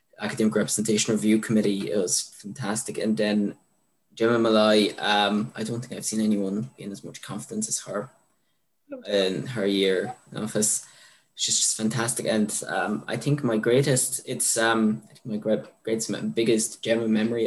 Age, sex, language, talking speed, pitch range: 10-29, male, English, 165 wpm, 105-115 Hz